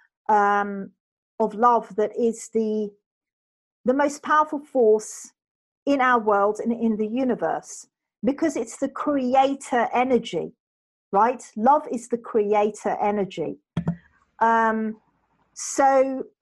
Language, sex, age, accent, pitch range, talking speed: English, female, 40-59, British, 215-290 Hz, 110 wpm